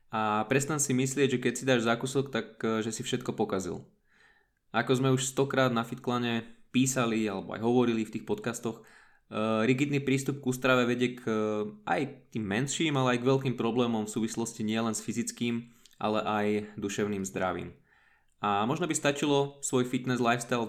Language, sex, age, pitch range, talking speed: Slovak, male, 20-39, 105-125 Hz, 175 wpm